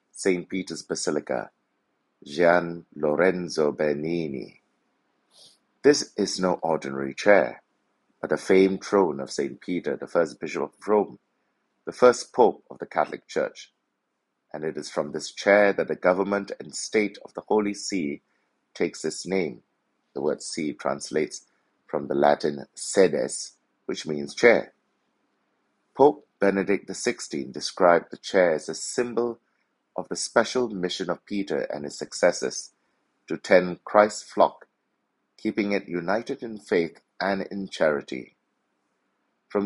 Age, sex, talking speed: 60-79, male, 135 wpm